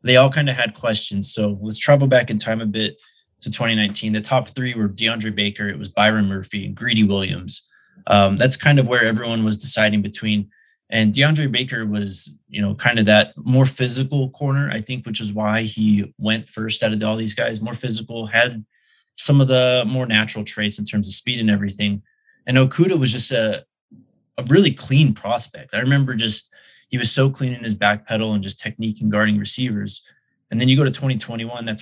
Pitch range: 105-125 Hz